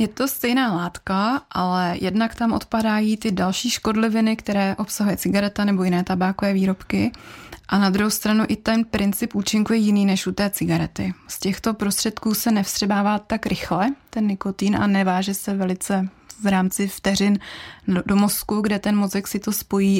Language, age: Czech, 20-39